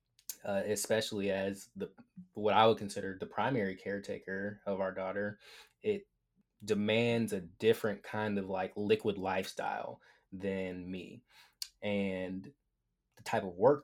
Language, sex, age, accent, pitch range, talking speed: English, male, 20-39, American, 95-115 Hz, 130 wpm